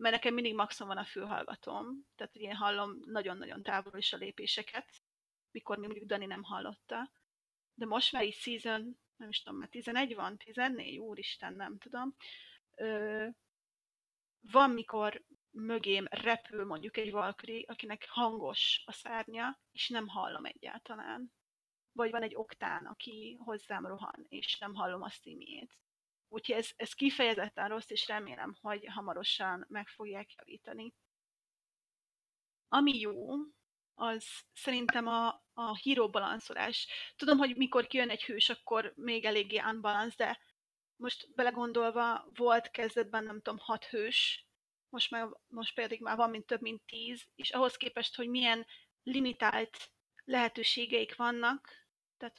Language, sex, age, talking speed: Hungarian, female, 30-49, 135 wpm